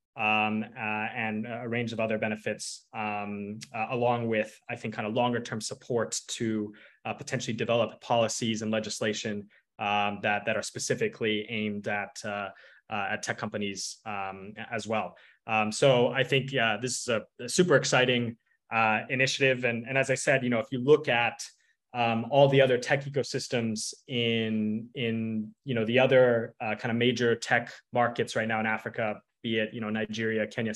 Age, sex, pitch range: 20-39, male, 110-125 Hz